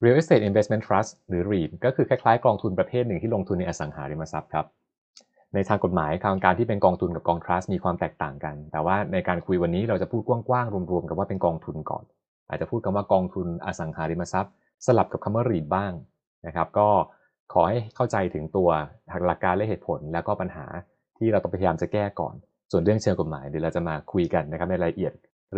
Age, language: 20-39, Thai